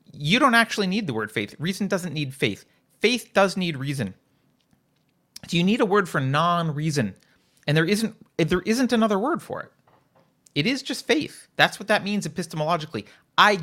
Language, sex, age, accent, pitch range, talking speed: English, male, 30-49, American, 135-195 Hz, 175 wpm